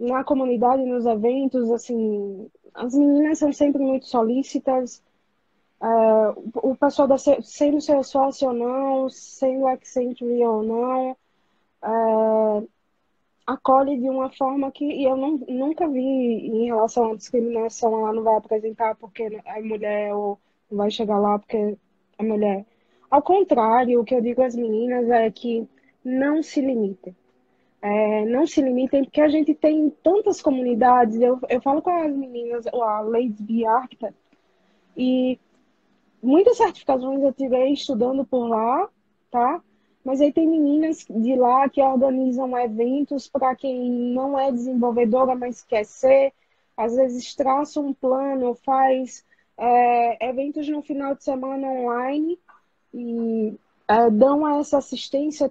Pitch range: 230-275 Hz